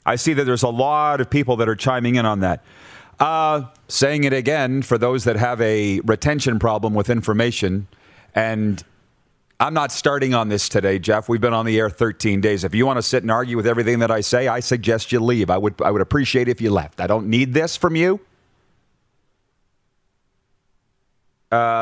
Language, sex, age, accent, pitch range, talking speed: English, male, 40-59, American, 110-150 Hz, 205 wpm